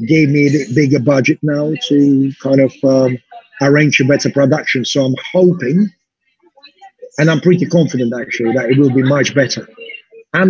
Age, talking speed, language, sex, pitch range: 50-69, 165 wpm, English, male, 140-170 Hz